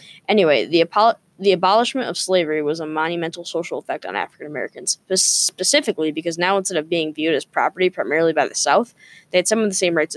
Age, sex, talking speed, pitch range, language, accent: 10-29, female, 200 wpm, 160-190 Hz, English, American